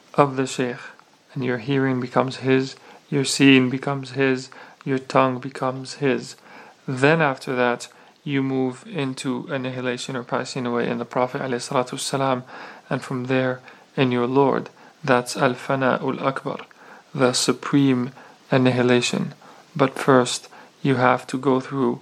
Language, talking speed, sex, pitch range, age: English, 130 wpm, male, 130-140 Hz, 40-59